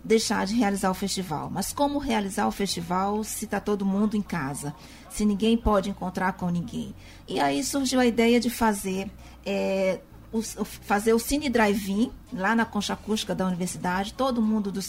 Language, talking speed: Portuguese, 175 wpm